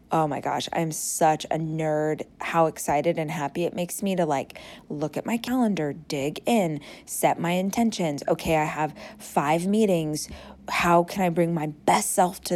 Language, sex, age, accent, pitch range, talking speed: English, female, 20-39, American, 160-190 Hz, 180 wpm